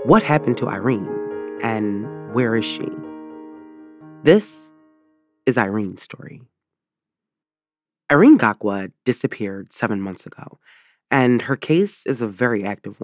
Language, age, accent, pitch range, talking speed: English, 30-49, American, 100-130 Hz, 115 wpm